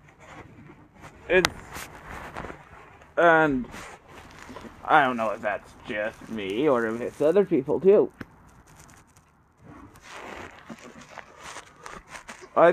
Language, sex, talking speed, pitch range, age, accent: English, male, 75 wpm, 125-155 Hz, 30-49, American